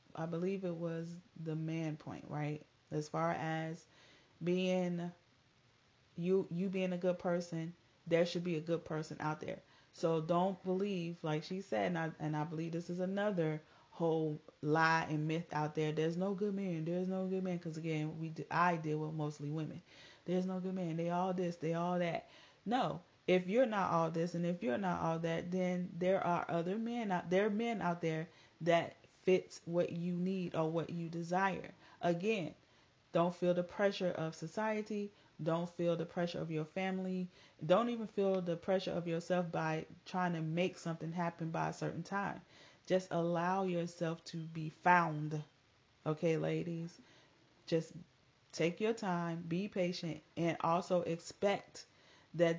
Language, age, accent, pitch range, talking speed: English, 30-49, American, 160-180 Hz, 175 wpm